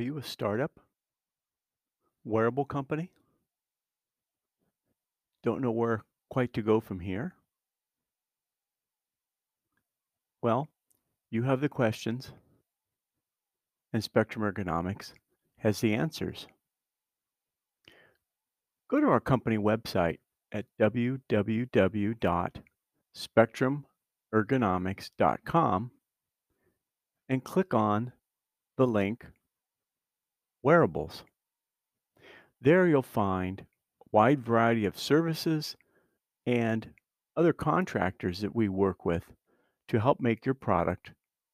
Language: English